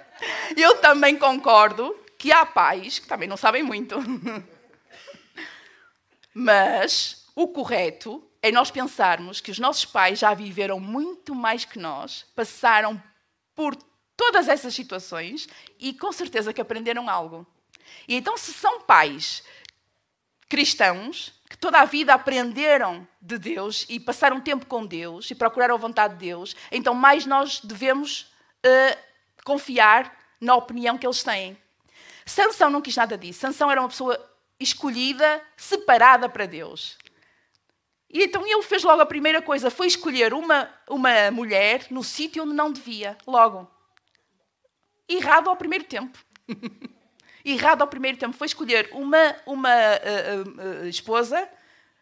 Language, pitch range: Portuguese, 220-300 Hz